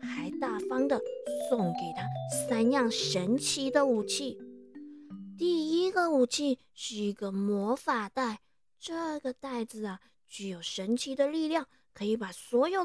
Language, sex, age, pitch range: Chinese, female, 20-39, 215-310 Hz